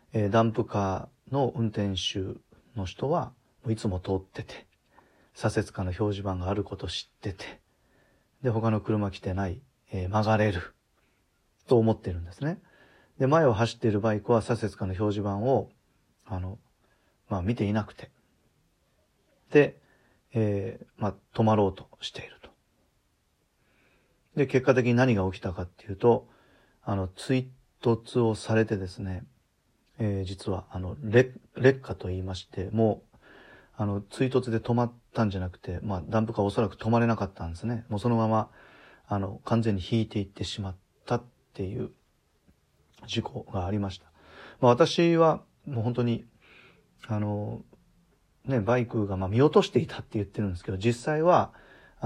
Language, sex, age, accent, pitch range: Japanese, male, 40-59, native, 95-120 Hz